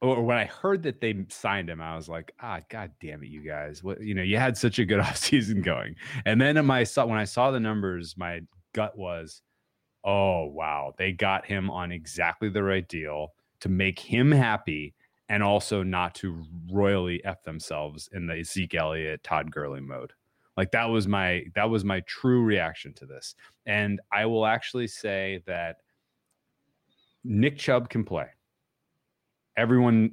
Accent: American